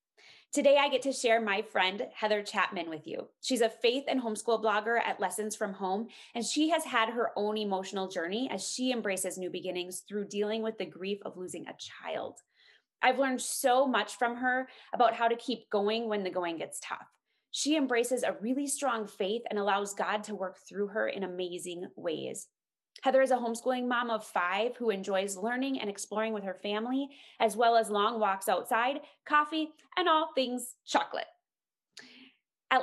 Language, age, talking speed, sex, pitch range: English, 20-39, 185 wpm, female, 190-250 Hz